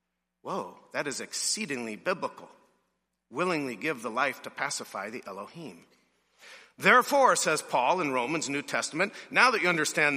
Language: English